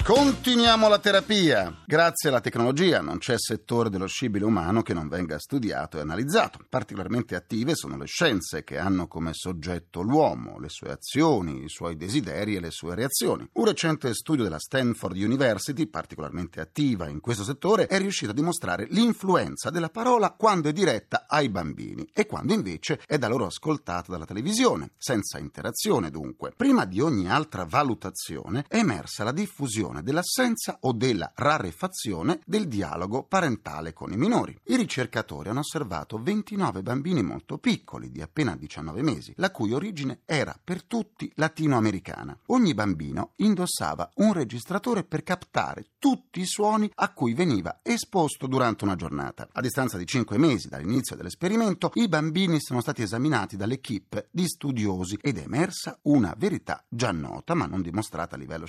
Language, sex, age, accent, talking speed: Italian, male, 40-59, native, 160 wpm